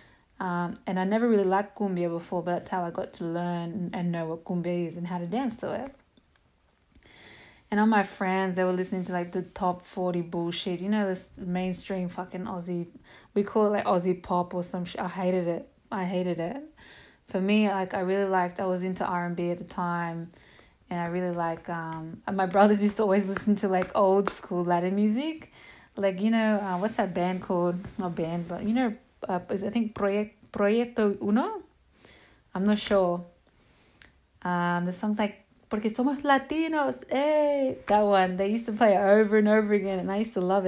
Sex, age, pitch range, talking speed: female, 20-39, 180-210 Hz, 200 wpm